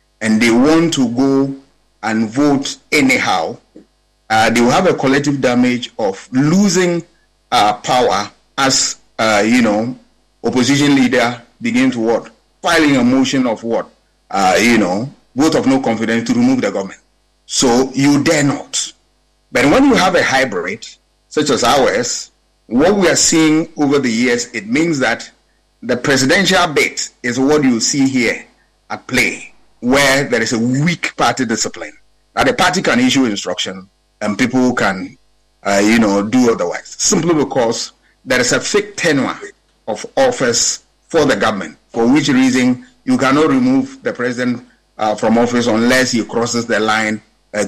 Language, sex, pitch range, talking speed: English, male, 115-175 Hz, 160 wpm